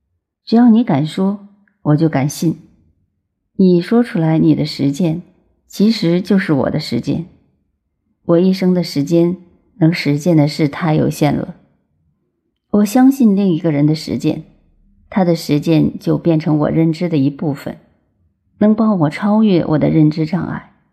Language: Chinese